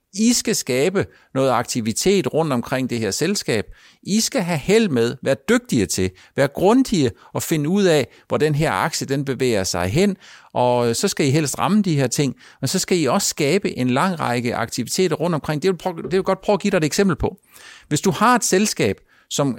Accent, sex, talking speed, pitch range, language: native, male, 215 wpm, 130-195 Hz, Danish